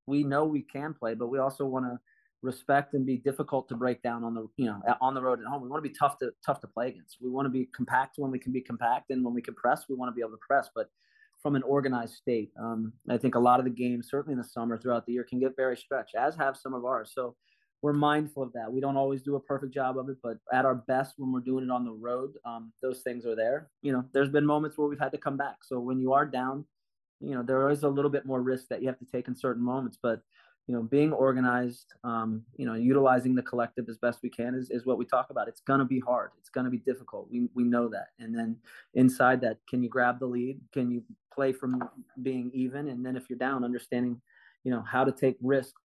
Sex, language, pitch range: male, English, 125-135 Hz